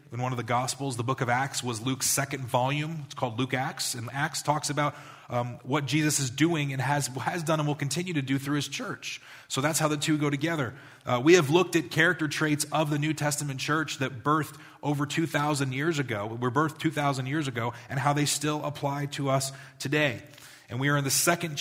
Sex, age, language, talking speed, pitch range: male, 30-49, English, 225 wpm, 130-150 Hz